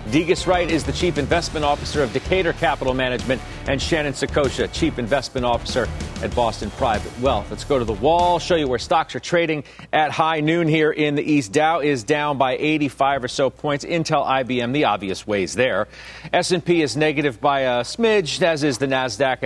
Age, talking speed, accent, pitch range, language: 40-59, 195 wpm, American, 130-175 Hz, English